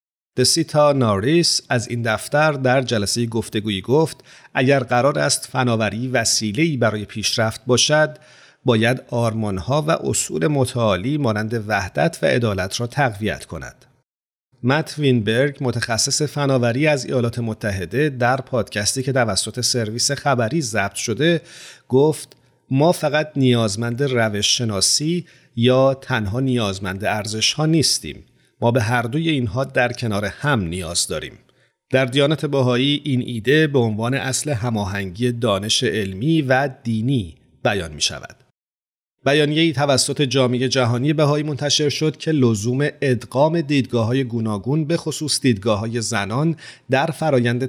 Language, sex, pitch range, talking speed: Persian, male, 110-145 Hz, 130 wpm